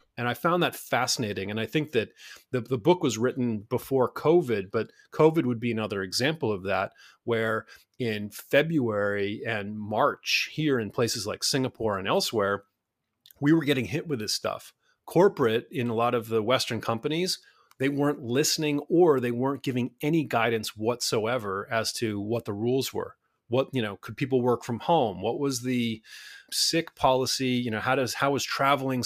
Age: 30-49